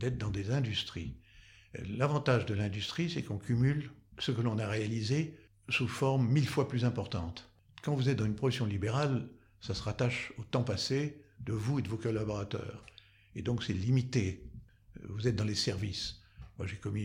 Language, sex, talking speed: French, male, 185 wpm